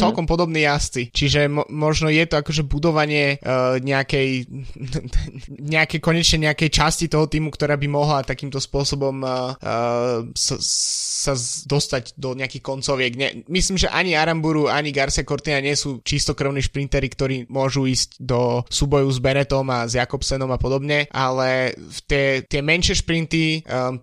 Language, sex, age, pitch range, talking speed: Slovak, male, 20-39, 130-150 Hz, 155 wpm